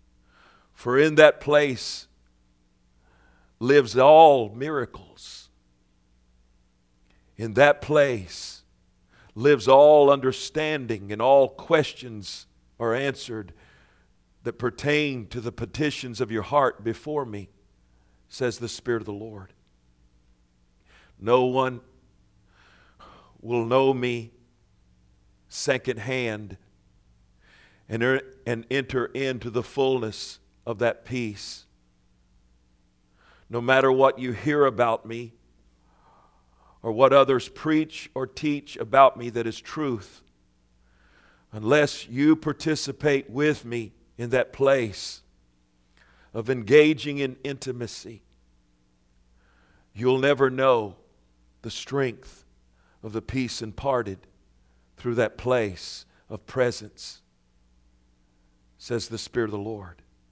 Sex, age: male, 50-69